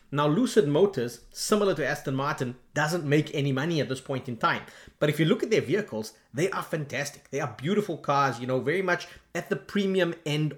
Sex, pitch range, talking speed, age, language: male, 135-175 Hz, 215 wpm, 30-49, English